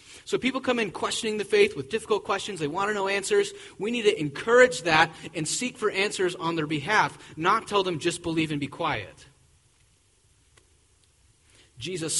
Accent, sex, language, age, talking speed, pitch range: American, male, English, 30-49, 175 wpm, 125-175 Hz